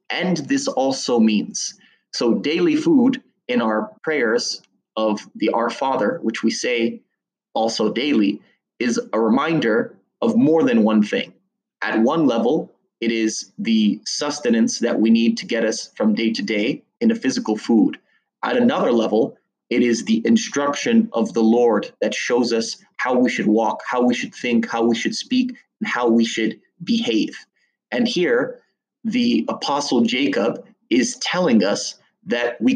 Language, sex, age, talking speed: English, male, 30-49, 160 wpm